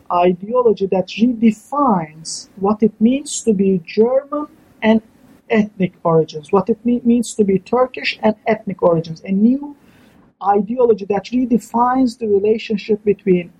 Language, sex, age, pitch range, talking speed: English, male, 50-69, 185-225 Hz, 130 wpm